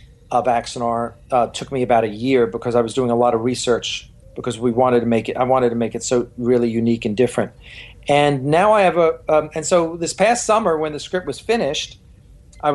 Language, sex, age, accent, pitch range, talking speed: English, male, 40-59, American, 125-165 Hz, 230 wpm